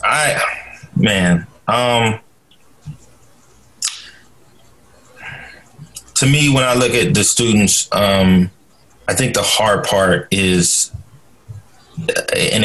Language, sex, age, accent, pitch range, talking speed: English, male, 20-39, American, 90-120 Hz, 90 wpm